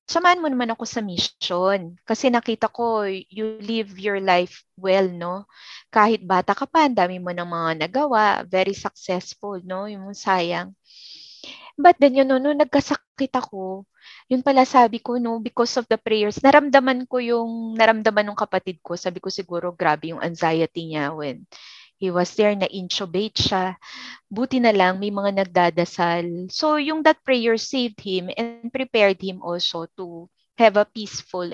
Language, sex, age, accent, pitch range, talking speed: Filipino, female, 20-39, native, 185-250 Hz, 165 wpm